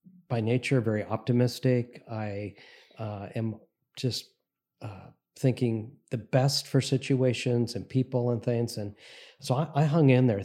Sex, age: male, 40-59